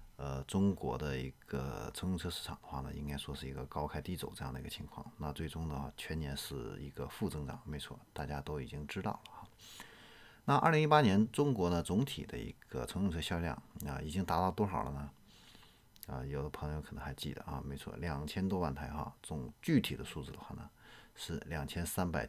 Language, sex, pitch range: Chinese, male, 75-105 Hz